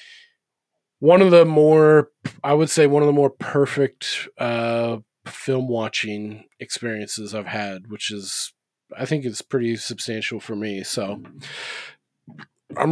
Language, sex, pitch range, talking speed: English, male, 115-140 Hz, 135 wpm